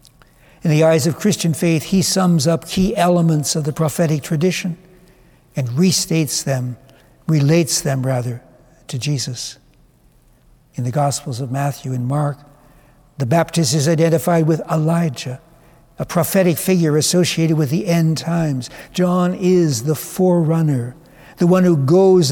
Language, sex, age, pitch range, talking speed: English, male, 60-79, 135-170 Hz, 140 wpm